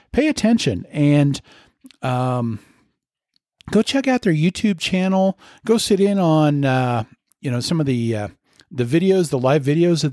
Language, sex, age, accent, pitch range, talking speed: English, male, 50-69, American, 115-170 Hz, 160 wpm